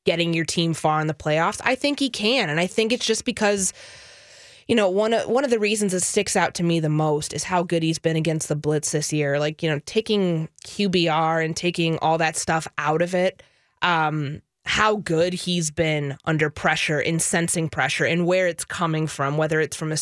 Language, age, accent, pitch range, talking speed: English, 20-39, American, 160-195 Hz, 220 wpm